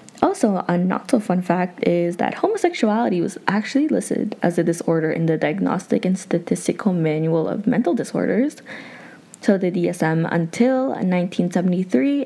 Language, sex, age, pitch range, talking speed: English, female, 20-39, 170-225 Hz, 130 wpm